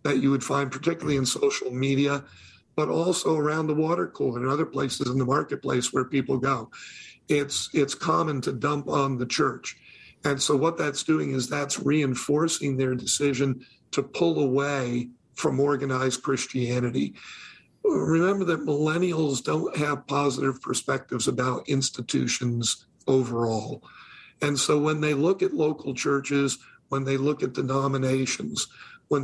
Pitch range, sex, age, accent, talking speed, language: 130-145 Hz, male, 50-69, American, 145 wpm, English